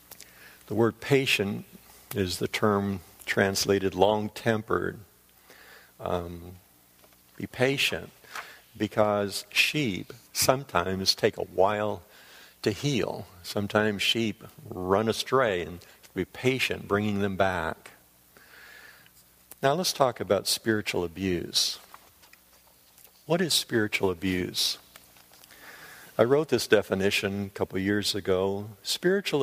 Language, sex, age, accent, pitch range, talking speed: English, male, 60-79, American, 95-115 Hz, 95 wpm